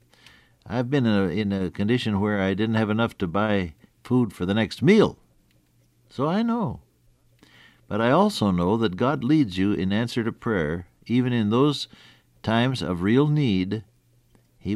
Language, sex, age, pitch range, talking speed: English, male, 60-79, 95-130 Hz, 170 wpm